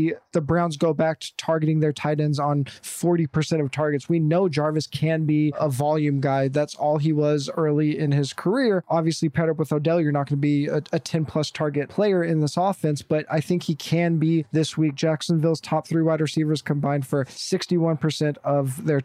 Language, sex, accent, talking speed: English, male, American, 205 wpm